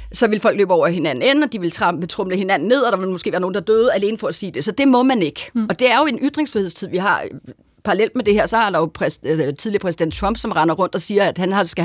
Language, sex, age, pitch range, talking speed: Danish, female, 40-59, 185-240 Hz, 300 wpm